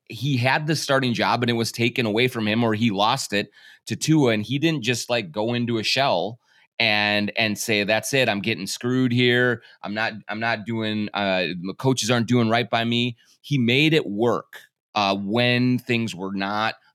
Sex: male